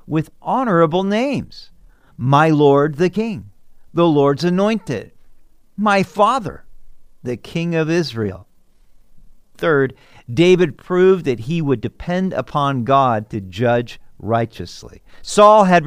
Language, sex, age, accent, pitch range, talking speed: English, male, 50-69, American, 115-175 Hz, 115 wpm